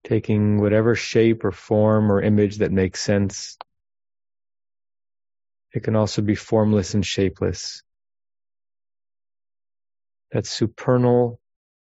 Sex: male